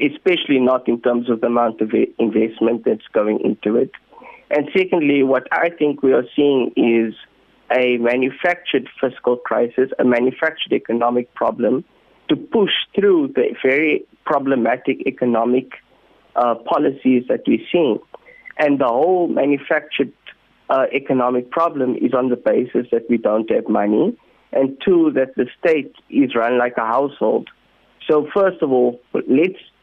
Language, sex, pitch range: English, male, 120-160 Hz